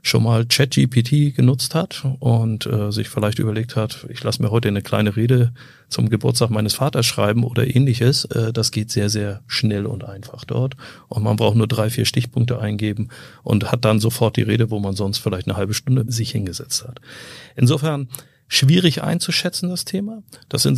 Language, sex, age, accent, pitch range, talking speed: German, male, 40-59, German, 110-130 Hz, 190 wpm